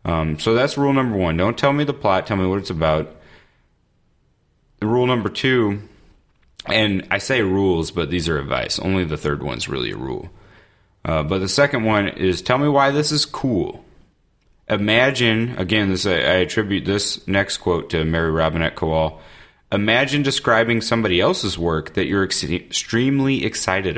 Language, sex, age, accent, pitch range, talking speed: English, male, 30-49, American, 85-110 Hz, 170 wpm